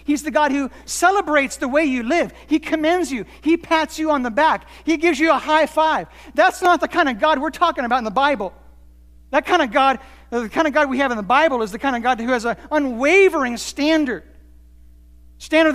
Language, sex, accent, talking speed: English, male, American, 230 wpm